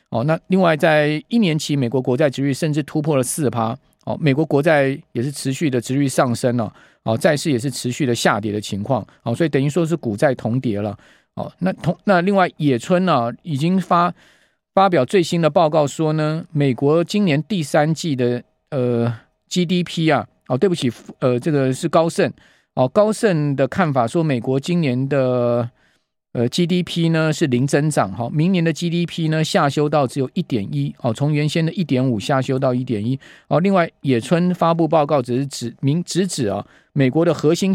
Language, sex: Chinese, male